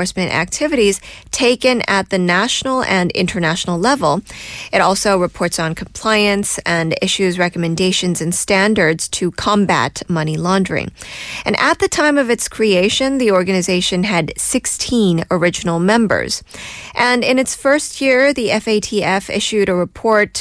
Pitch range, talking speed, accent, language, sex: 175-220 Hz, 130 wpm, American, English, female